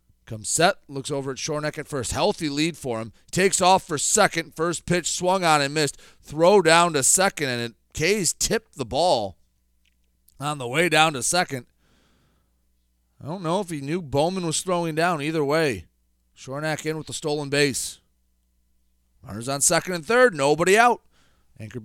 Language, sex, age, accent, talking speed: English, male, 30-49, American, 175 wpm